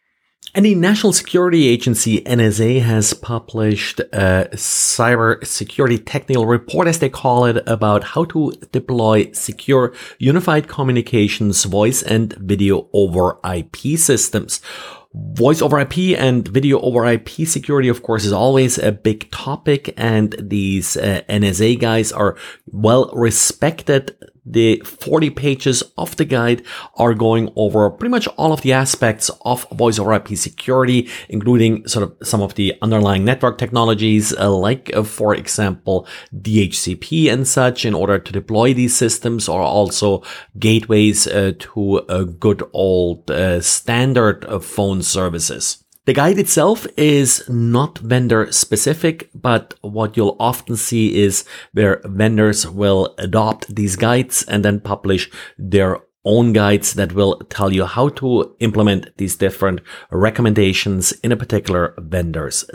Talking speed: 140 wpm